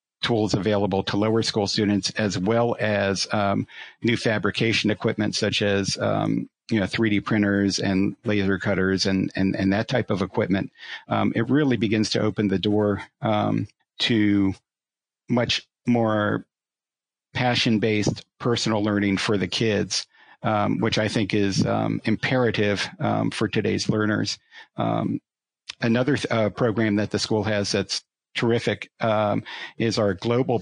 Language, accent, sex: English, American, male